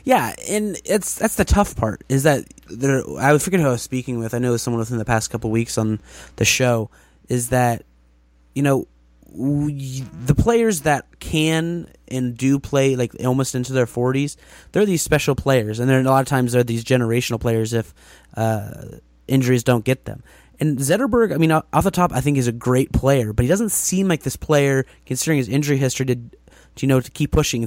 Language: English